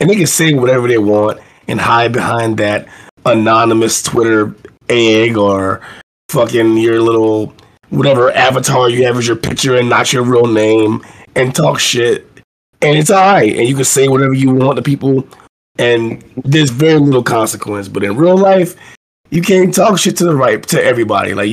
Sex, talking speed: male, 180 wpm